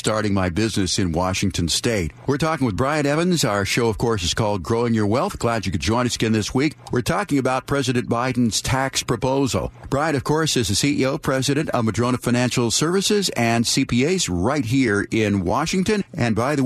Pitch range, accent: 105-130 Hz, American